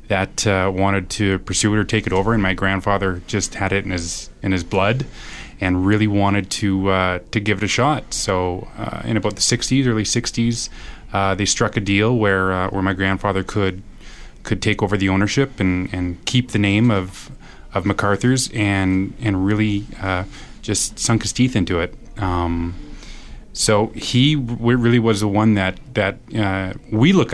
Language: English